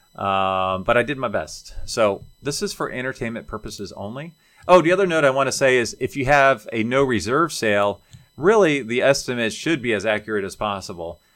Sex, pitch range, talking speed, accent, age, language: male, 105-130 Hz, 200 wpm, American, 40-59, English